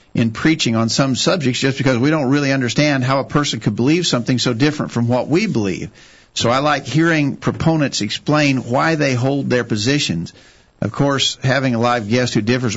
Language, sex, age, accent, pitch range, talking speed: English, male, 50-69, American, 115-145 Hz, 195 wpm